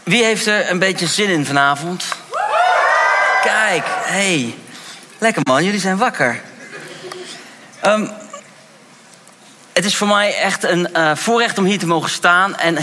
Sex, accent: male, Dutch